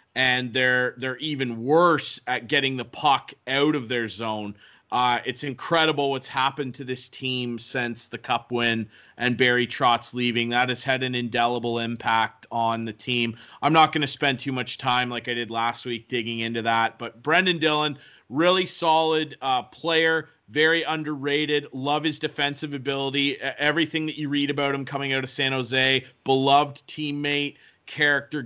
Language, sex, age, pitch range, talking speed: English, male, 30-49, 125-150 Hz, 170 wpm